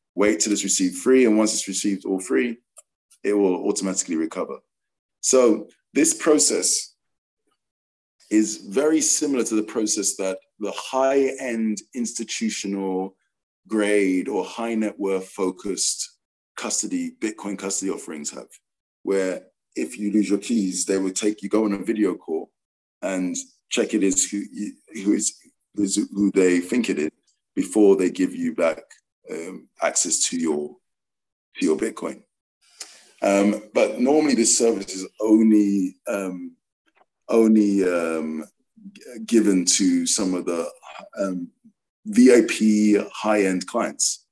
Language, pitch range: English, 95-140 Hz